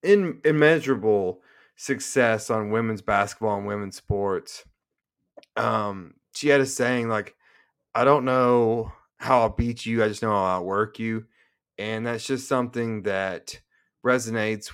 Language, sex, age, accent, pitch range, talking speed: English, male, 30-49, American, 100-120 Hz, 145 wpm